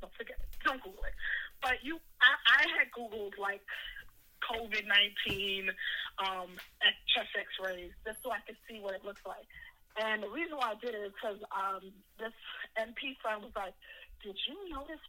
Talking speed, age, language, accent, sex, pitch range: 185 wpm, 20-39, English, American, female, 200-250 Hz